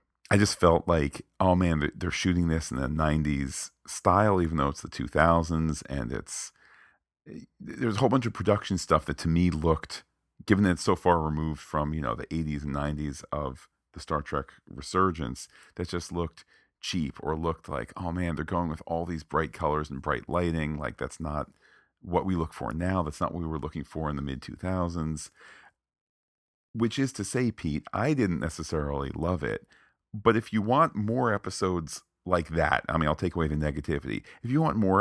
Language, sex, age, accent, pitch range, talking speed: English, male, 40-59, American, 75-95 Hz, 200 wpm